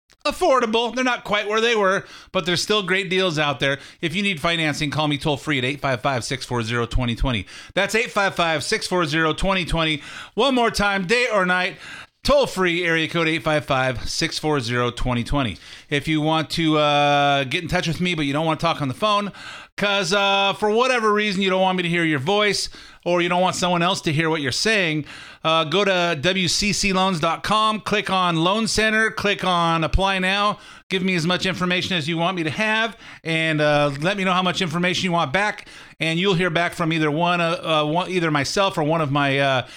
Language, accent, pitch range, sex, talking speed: English, American, 155-195 Hz, male, 195 wpm